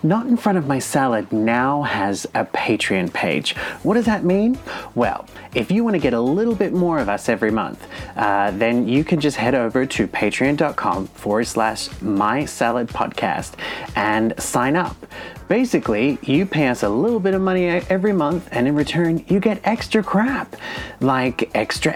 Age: 30-49